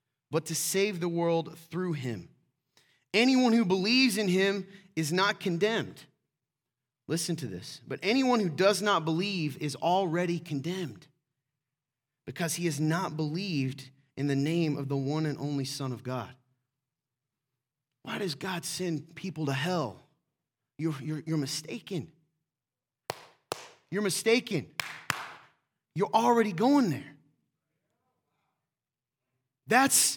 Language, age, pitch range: English, 30-49, 145-215 Hz